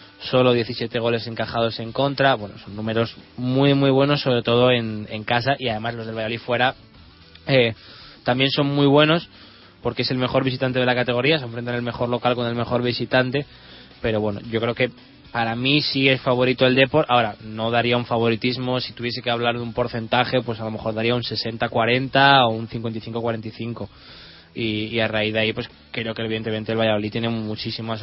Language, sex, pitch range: Spanish, male, 110-125 Hz